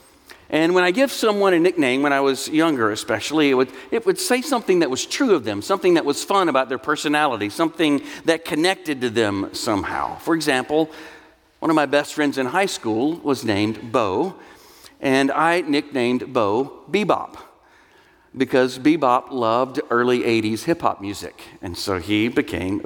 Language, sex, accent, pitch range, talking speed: English, male, American, 125-180 Hz, 170 wpm